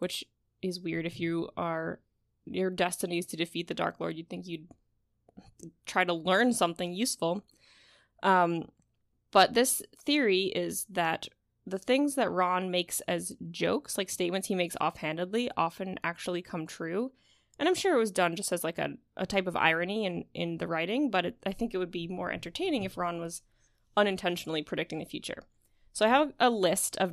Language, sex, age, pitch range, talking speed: English, female, 20-39, 170-205 Hz, 185 wpm